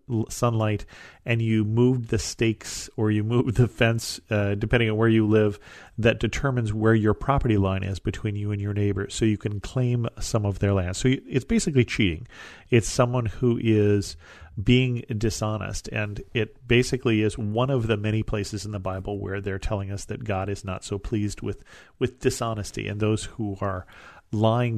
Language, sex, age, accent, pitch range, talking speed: English, male, 40-59, American, 100-120 Hz, 190 wpm